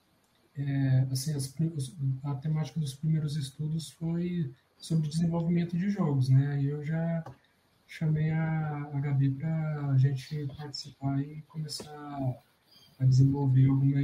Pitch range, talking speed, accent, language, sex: 130-150 Hz, 130 wpm, Brazilian, Portuguese, male